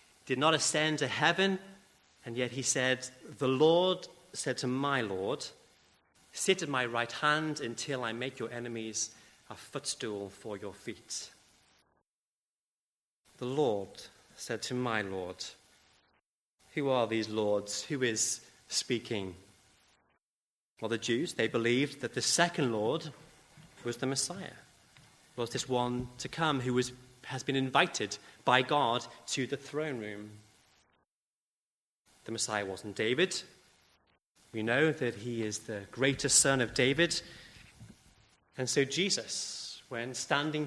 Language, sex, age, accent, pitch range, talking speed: English, male, 30-49, British, 100-135 Hz, 135 wpm